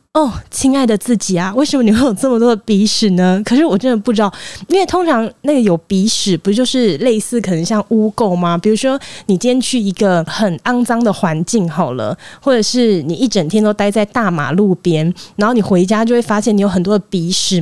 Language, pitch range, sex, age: Chinese, 190-255 Hz, female, 20-39